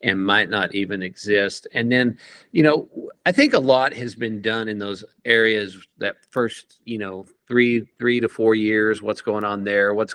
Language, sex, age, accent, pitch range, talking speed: English, male, 50-69, American, 100-125 Hz, 195 wpm